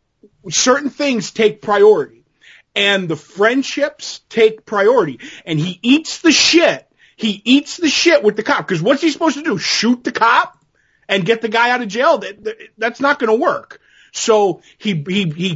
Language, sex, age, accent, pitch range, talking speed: English, male, 30-49, American, 170-255 Hz, 175 wpm